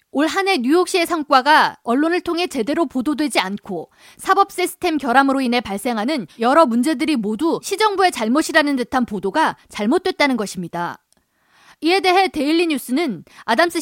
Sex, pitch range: female, 250-340 Hz